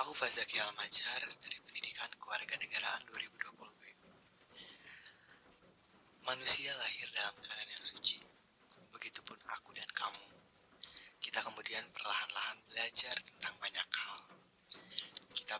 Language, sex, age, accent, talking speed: Indonesian, male, 30-49, native, 95 wpm